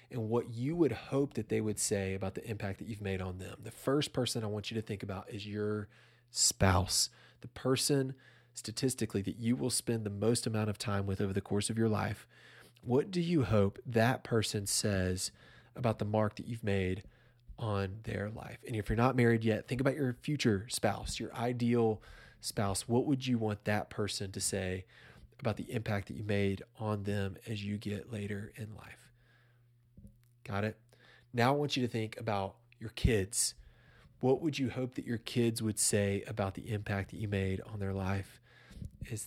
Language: English